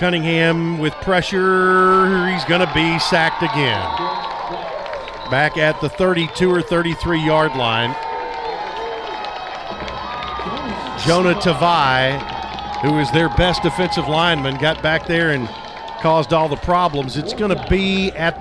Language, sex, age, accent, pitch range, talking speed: English, male, 50-69, American, 145-185 Hz, 115 wpm